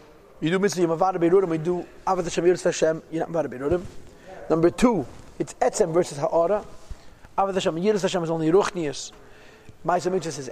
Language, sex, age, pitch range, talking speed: English, male, 40-59, 170-225 Hz, 165 wpm